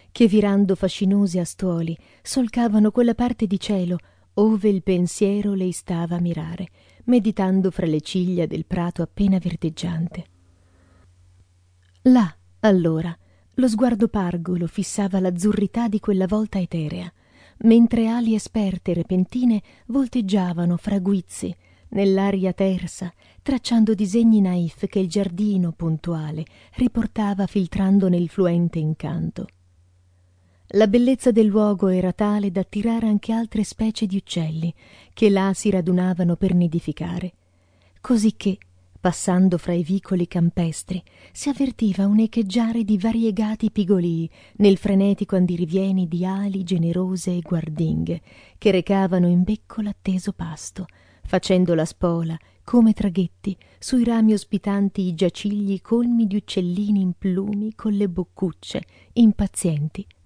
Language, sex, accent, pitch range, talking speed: Italian, female, native, 170-210 Hz, 120 wpm